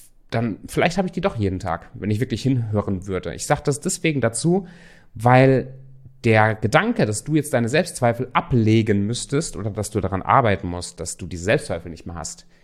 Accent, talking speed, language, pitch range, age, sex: German, 195 wpm, German, 105-150 Hz, 30-49, male